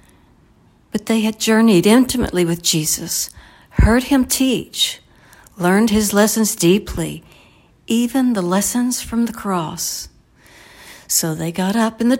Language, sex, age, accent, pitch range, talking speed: English, female, 60-79, American, 180-225 Hz, 130 wpm